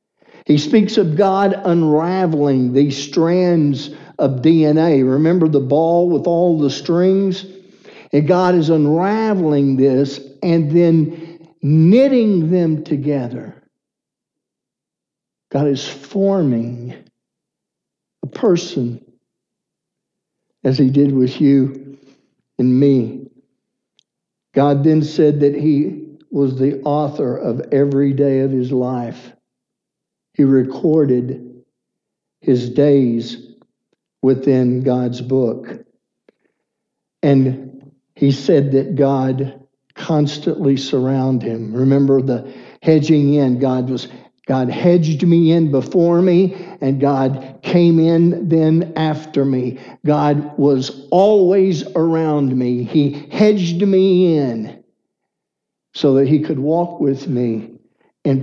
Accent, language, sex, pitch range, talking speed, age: American, English, male, 135-165 Hz, 105 wpm, 60-79